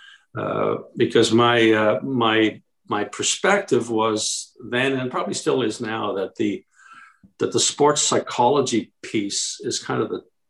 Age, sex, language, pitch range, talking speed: 50-69, male, English, 105-125 Hz, 145 wpm